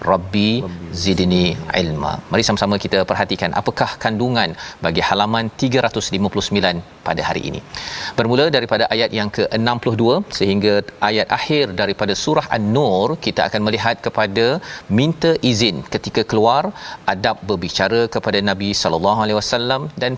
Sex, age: male, 40-59